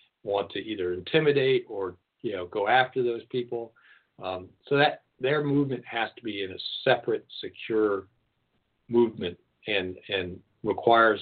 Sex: male